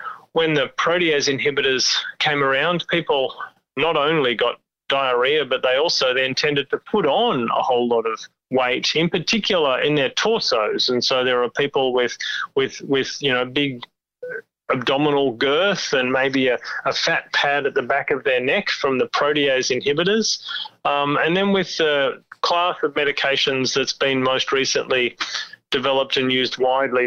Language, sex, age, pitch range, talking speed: English, male, 30-49, 130-175 Hz, 165 wpm